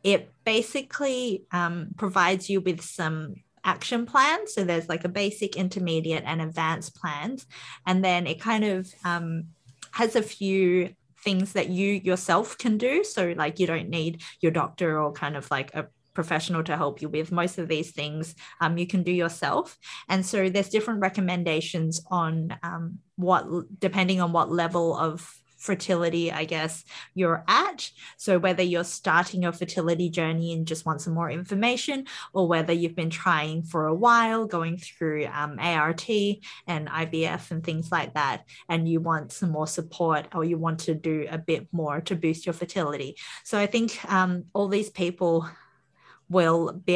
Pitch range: 165-190 Hz